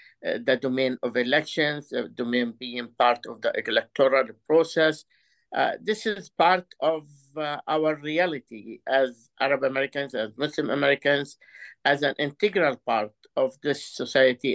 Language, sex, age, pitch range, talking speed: Arabic, male, 50-69, 130-165 Hz, 140 wpm